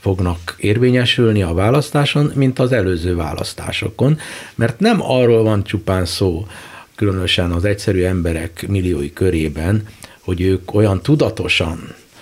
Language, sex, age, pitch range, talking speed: Hungarian, male, 60-79, 95-130 Hz, 120 wpm